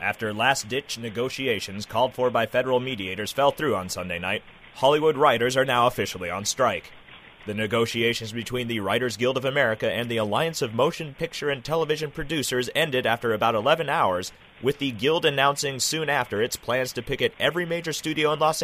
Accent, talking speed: American, 185 wpm